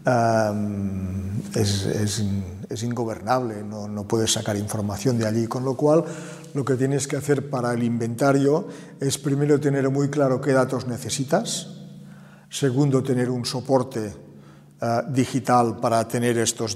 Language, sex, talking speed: Spanish, male, 145 wpm